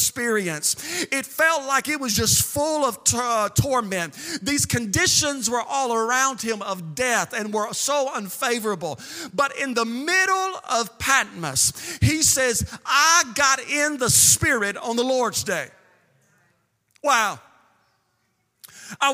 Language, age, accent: English, 40-59, American